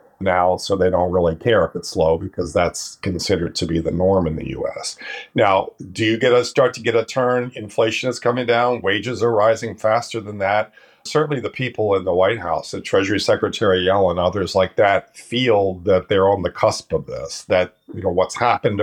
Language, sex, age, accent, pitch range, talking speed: English, male, 50-69, American, 100-135 Hz, 210 wpm